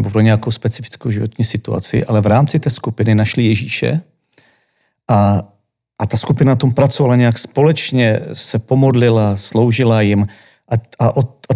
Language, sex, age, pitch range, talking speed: Czech, male, 40-59, 110-130 Hz, 140 wpm